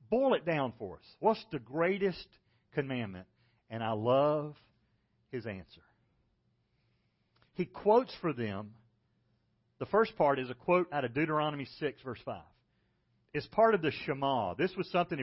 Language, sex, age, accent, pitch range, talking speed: English, male, 40-59, American, 115-175 Hz, 150 wpm